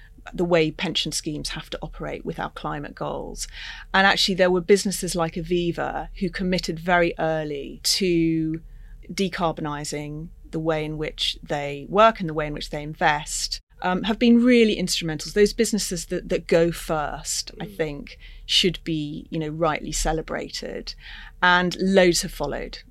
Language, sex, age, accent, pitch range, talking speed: English, female, 30-49, British, 160-200 Hz, 155 wpm